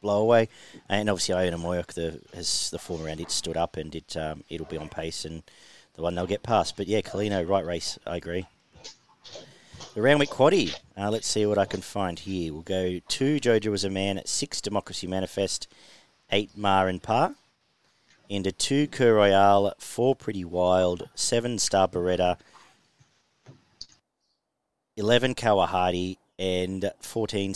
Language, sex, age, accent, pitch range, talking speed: English, male, 40-59, Australian, 90-105 Hz, 165 wpm